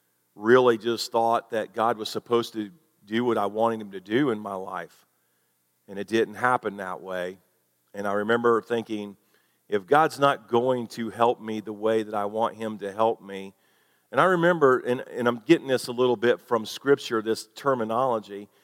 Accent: American